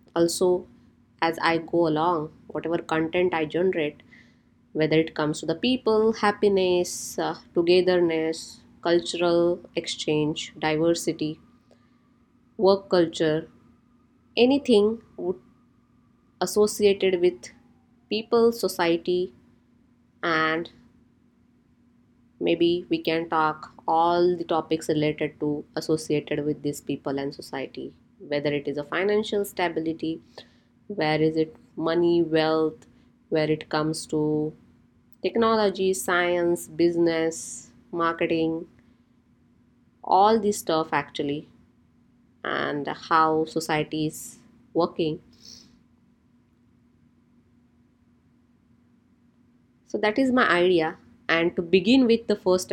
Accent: Indian